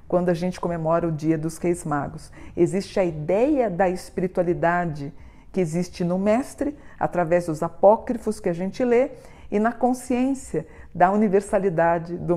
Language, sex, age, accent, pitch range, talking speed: Portuguese, female, 50-69, Brazilian, 175-215 Hz, 150 wpm